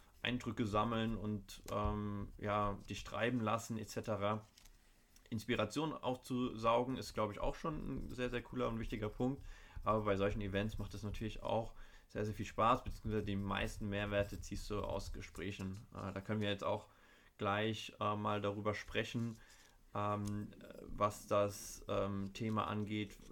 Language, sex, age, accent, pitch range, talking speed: German, male, 20-39, German, 100-110 Hz, 155 wpm